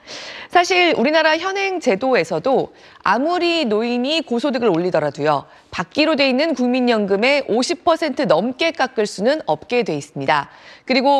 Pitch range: 200-300 Hz